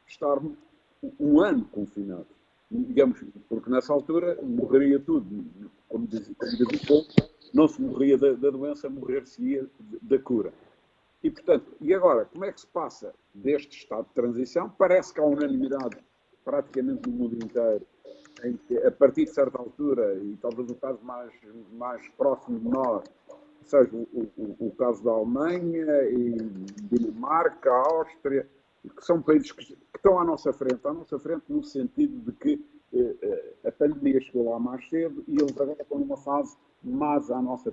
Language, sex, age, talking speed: Portuguese, male, 50-69, 160 wpm